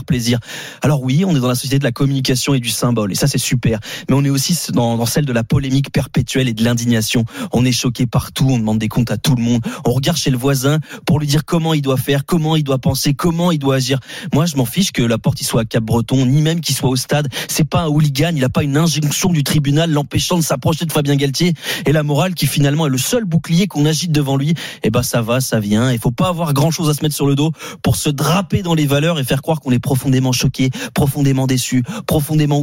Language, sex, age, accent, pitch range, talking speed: French, male, 20-39, French, 130-160 Hz, 270 wpm